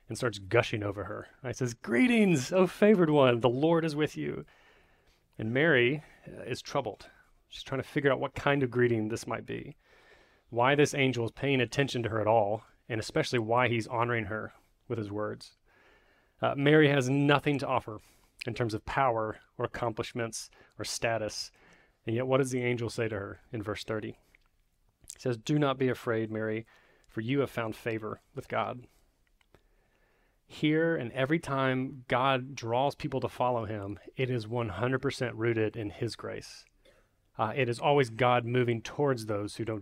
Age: 30-49